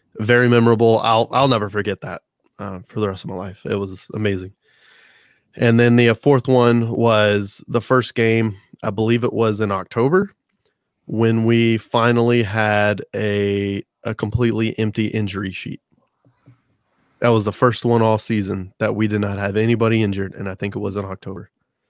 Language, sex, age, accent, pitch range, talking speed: English, male, 20-39, American, 100-115 Hz, 175 wpm